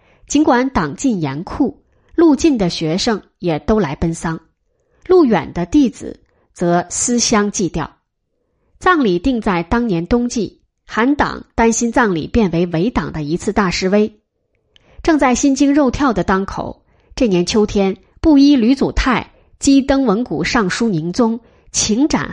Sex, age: female, 20-39